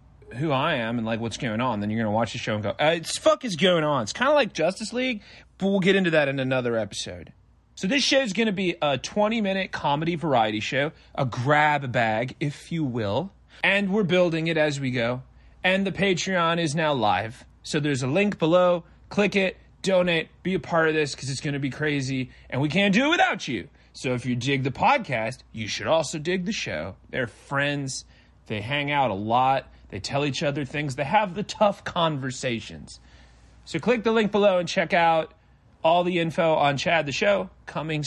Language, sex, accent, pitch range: English, male, American, 135-220 Hz